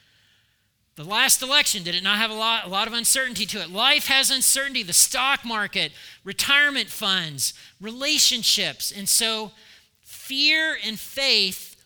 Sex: male